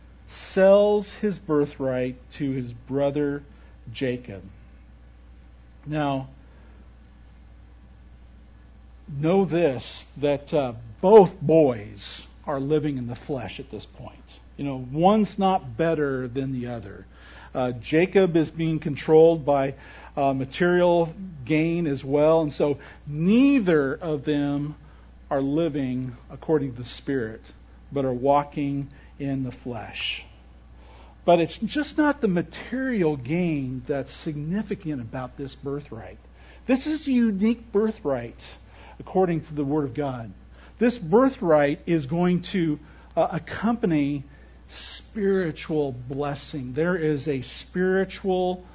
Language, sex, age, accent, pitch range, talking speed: English, male, 50-69, American, 125-175 Hz, 115 wpm